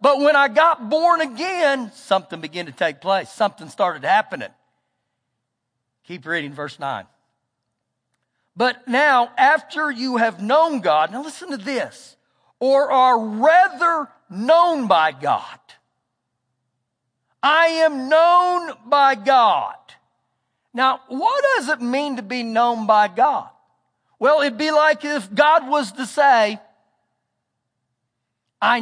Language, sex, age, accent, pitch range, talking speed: English, male, 50-69, American, 195-300 Hz, 125 wpm